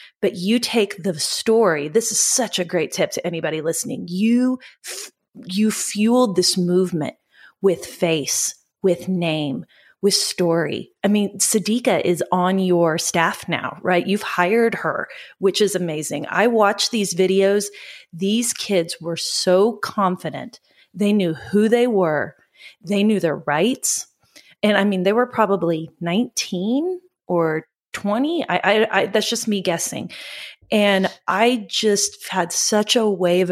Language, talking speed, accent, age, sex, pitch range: English, 150 wpm, American, 30-49, female, 175-215 Hz